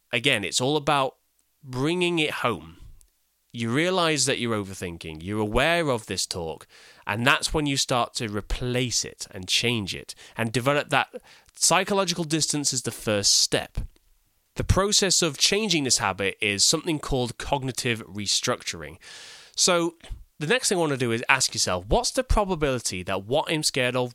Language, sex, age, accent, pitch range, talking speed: English, male, 20-39, British, 110-165 Hz, 165 wpm